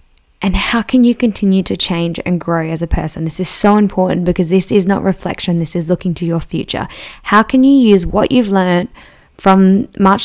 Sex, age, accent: female, 10-29, Australian